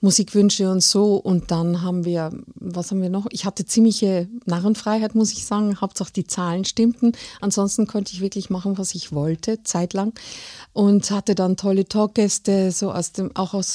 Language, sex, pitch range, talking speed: German, female, 185-230 Hz, 180 wpm